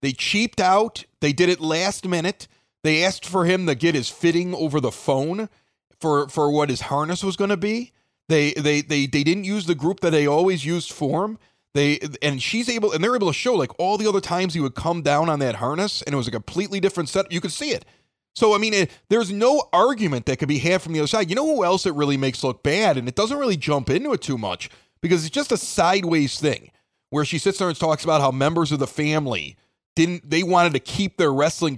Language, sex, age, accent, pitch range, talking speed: English, male, 30-49, American, 140-185 Hz, 250 wpm